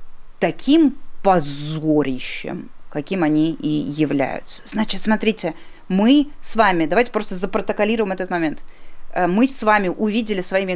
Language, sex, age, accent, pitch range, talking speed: Russian, female, 20-39, native, 175-230 Hz, 115 wpm